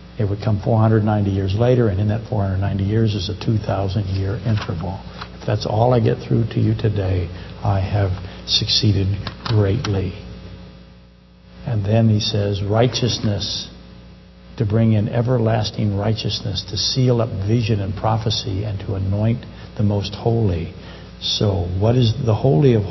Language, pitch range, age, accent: English, 95-115 Hz, 60-79, American